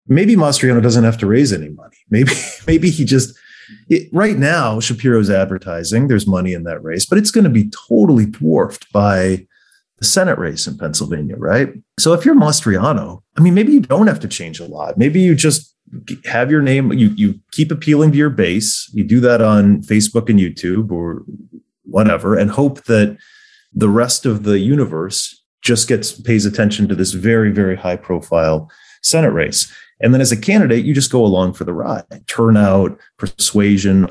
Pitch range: 95-125 Hz